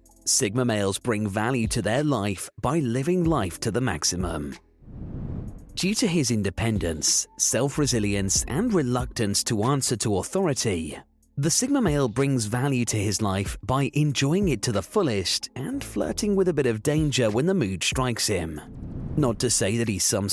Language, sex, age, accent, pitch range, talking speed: English, male, 30-49, British, 100-140 Hz, 165 wpm